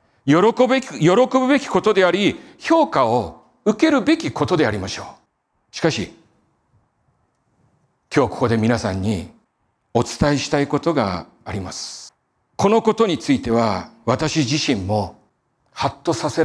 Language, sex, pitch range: Japanese, male, 120-180 Hz